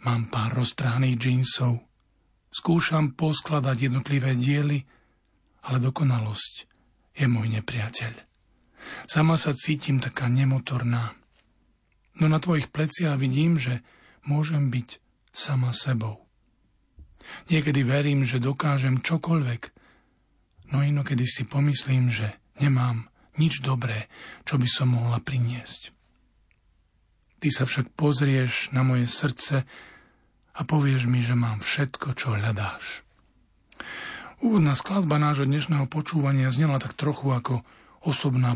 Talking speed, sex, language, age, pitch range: 110 wpm, male, Slovak, 40-59, 125-150 Hz